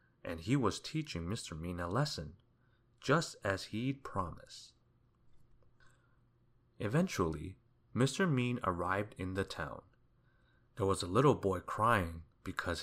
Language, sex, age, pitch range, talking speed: English, male, 30-49, 95-135 Hz, 120 wpm